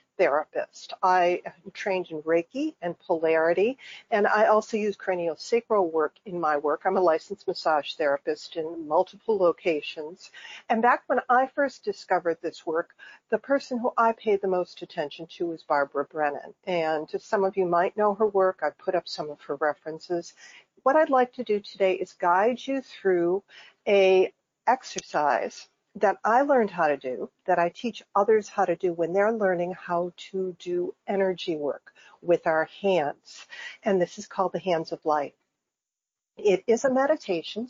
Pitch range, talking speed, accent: 170-220 Hz, 170 wpm, American